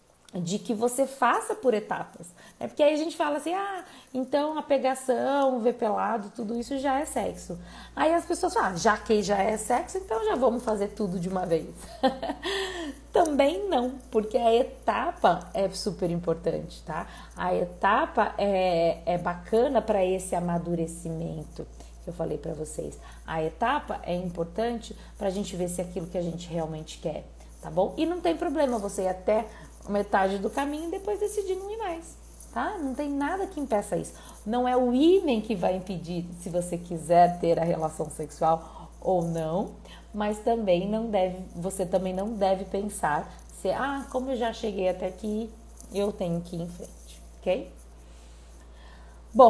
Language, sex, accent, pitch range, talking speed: Portuguese, female, Brazilian, 175-260 Hz, 180 wpm